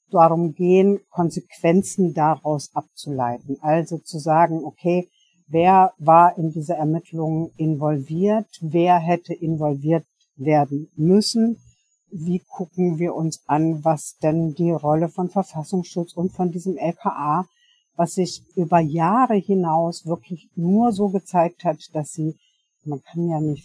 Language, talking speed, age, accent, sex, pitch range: German, 130 wpm, 60-79, German, female, 160-185 Hz